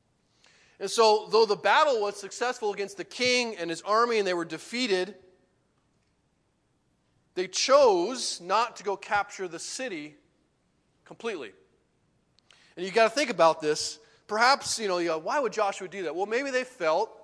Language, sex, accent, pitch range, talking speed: English, male, American, 155-205 Hz, 155 wpm